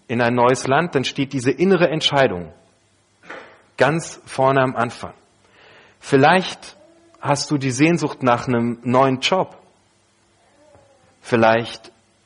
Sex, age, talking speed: male, 40-59, 115 wpm